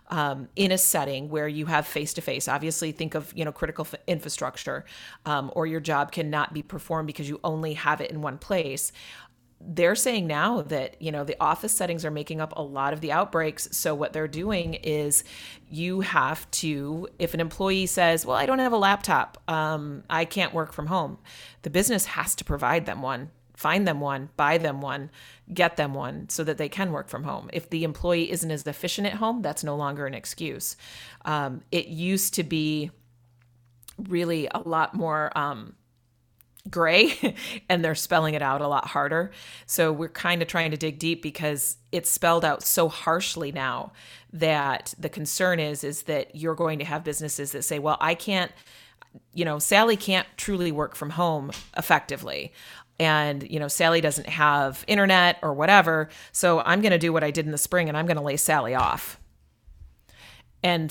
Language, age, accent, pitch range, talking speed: English, 30-49, American, 150-175 Hz, 195 wpm